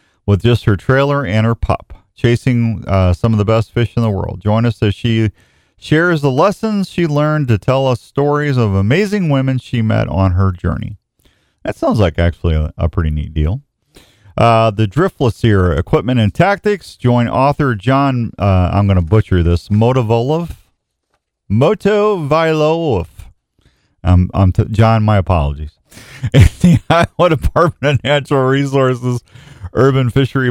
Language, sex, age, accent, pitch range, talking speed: English, male, 40-59, American, 105-135 Hz, 155 wpm